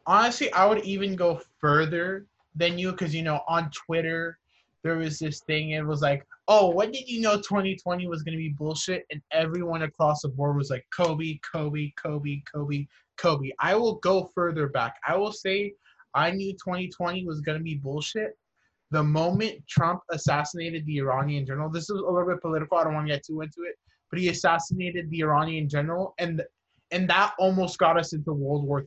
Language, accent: English, American